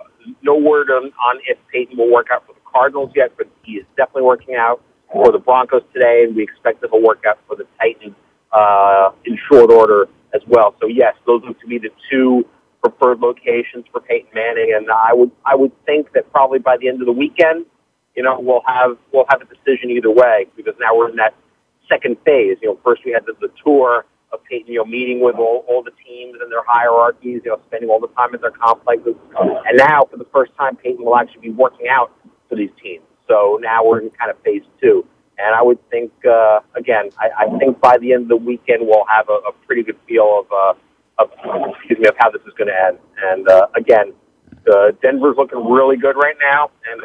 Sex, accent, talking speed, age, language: male, American, 230 wpm, 40-59, English